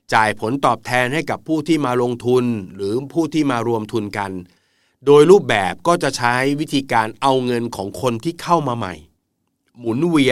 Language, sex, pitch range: Thai, male, 105-130 Hz